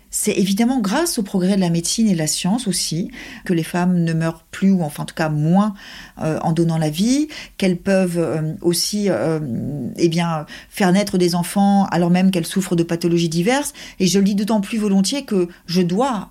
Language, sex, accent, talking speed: French, female, French, 215 wpm